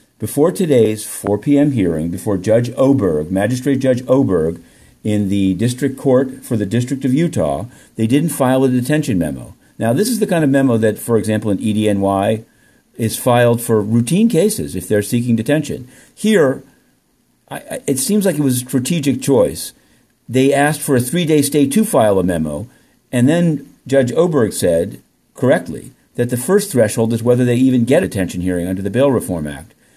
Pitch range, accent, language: 110-140 Hz, American, English